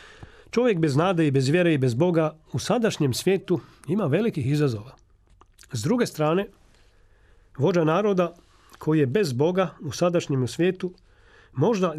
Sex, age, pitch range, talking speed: male, 40-59, 135-175 Hz, 140 wpm